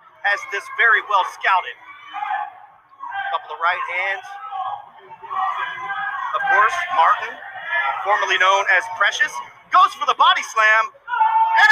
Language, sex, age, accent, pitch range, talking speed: English, male, 30-49, American, 280-415 Hz, 120 wpm